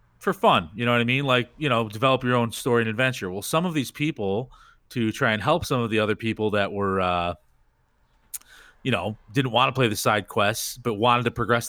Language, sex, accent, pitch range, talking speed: English, male, American, 105-130 Hz, 235 wpm